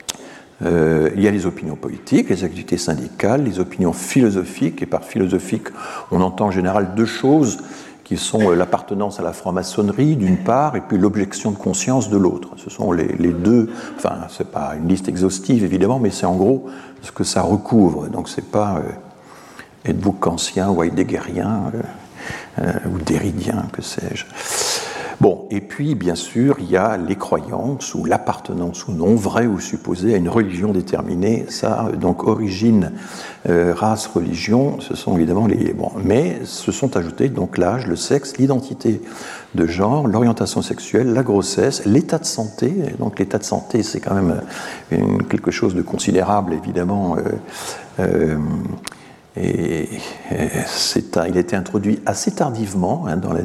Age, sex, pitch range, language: 50-69, male, 90-115 Hz, French